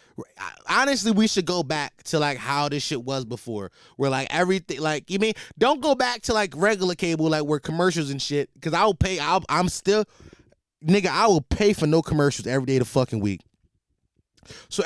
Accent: American